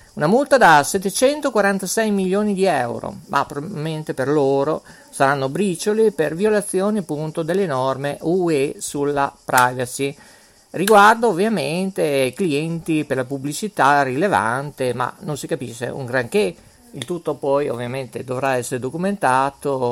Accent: native